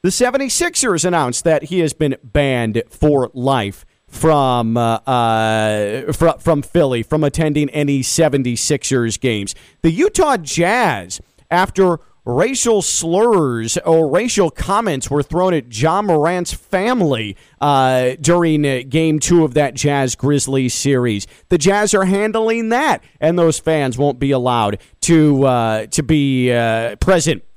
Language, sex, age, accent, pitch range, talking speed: English, male, 40-59, American, 130-195 Hz, 135 wpm